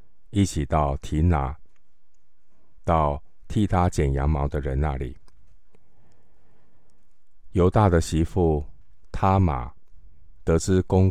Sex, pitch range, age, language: male, 70-90 Hz, 50-69, Chinese